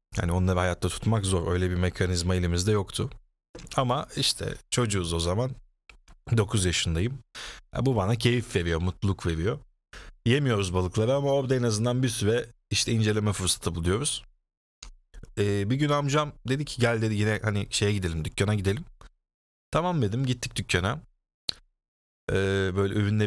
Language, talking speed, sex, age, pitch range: Turkish, 135 wpm, male, 40-59, 100-120 Hz